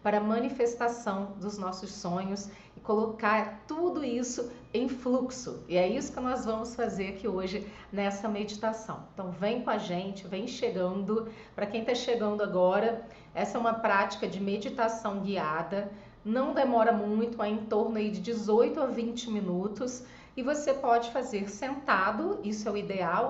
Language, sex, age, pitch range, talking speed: Portuguese, female, 40-59, 205-255 Hz, 160 wpm